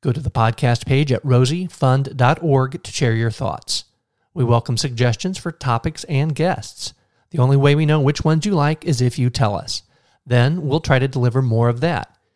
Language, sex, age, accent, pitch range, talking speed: English, male, 40-59, American, 115-145 Hz, 195 wpm